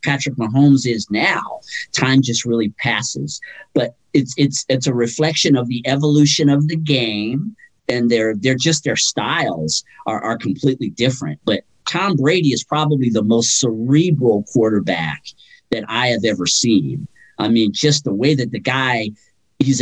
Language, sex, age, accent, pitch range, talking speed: English, male, 50-69, American, 115-145 Hz, 160 wpm